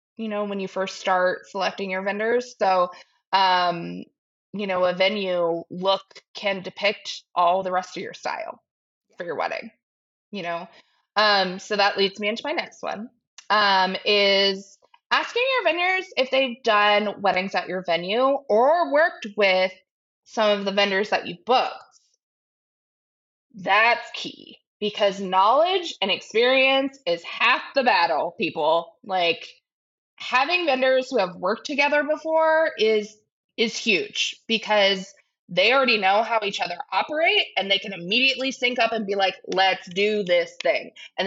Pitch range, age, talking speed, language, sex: 195-265 Hz, 20-39, 150 wpm, English, female